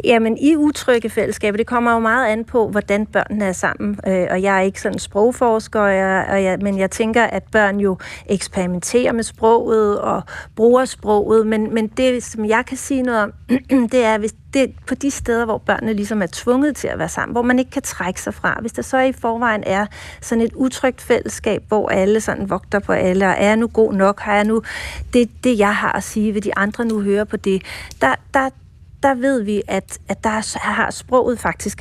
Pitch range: 200-235 Hz